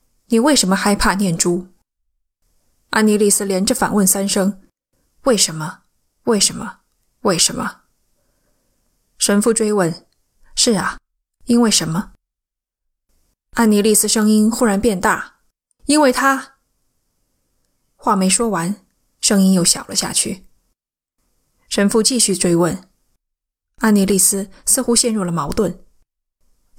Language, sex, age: Chinese, female, 20-39